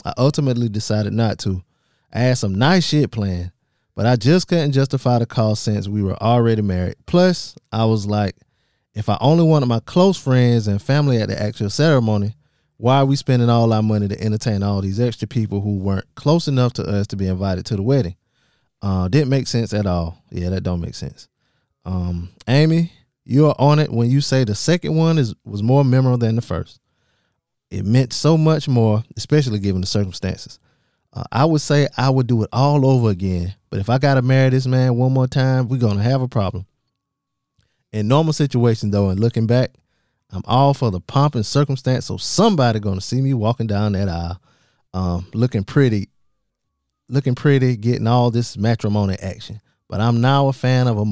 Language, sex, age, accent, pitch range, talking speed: English, male, 20-39, American, 100-135 Hz, 200 wpm